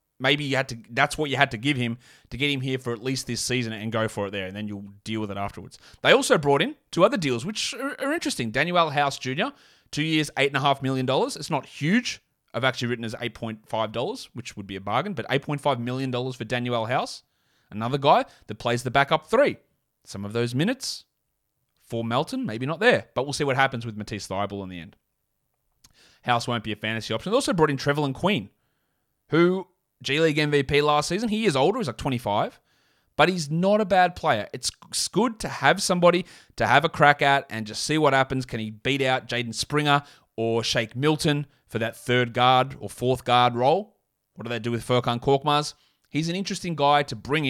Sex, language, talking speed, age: male, English, 215 wpm, 30-49